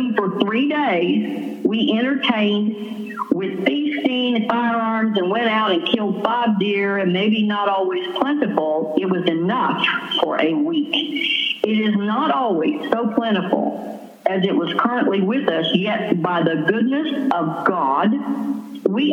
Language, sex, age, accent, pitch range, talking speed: English, female, 50-69, American, 185-250 Hz, 145 wpm